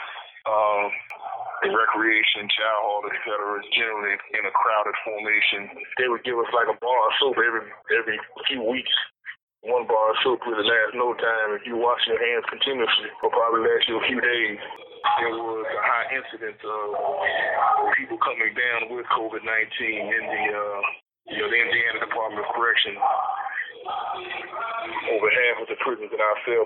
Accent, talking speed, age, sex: American, 175 wpm, 20-39, male